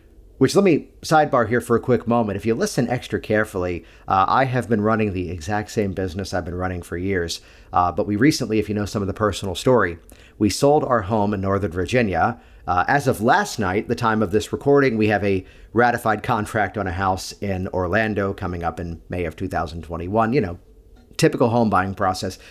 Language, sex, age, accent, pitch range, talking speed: English, male, 40-59, American, 95-125 Hz, 210 wpm